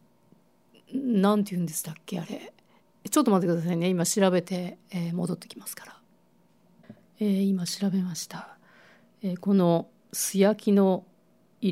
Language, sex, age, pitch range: Japanese, female, 50-69, 170-215 Hz